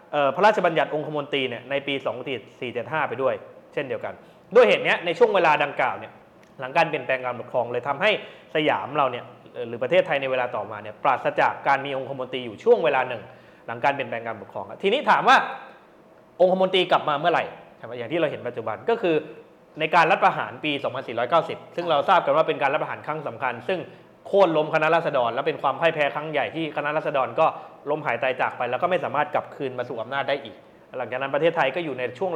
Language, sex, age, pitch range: Thai, male, 20-39, 130-175 Hz